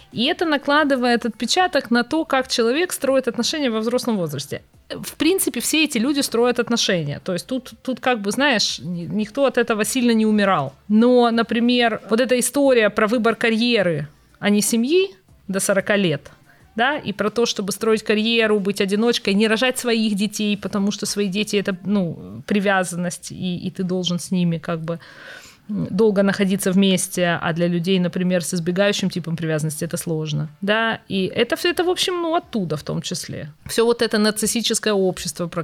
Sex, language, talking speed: female, Ukrainian, 175 wpm